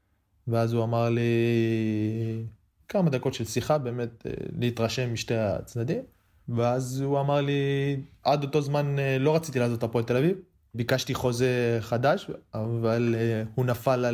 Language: Hebrew